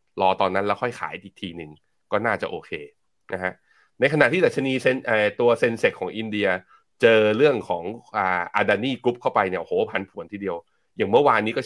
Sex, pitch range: male, 100-135 Hz